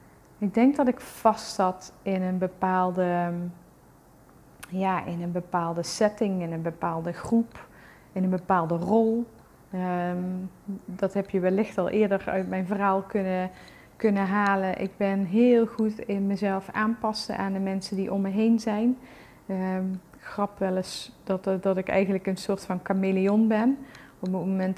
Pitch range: 185-215 Hz